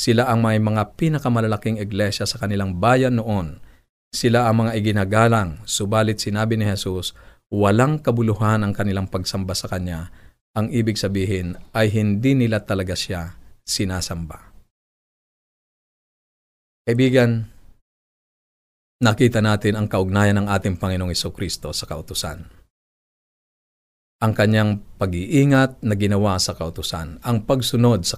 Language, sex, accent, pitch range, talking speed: Filipino, male, native, 95-115 Hz, 120 wpm